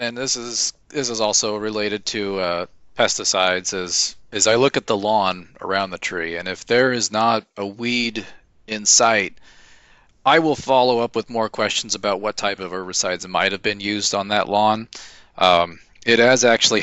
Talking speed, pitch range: 185 wpm, 100-120 Hz